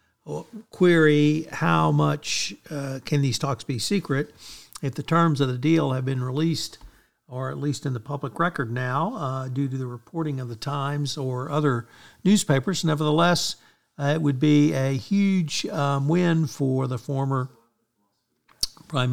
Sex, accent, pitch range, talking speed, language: male, American, 130-160 Hz, 155 wpm, English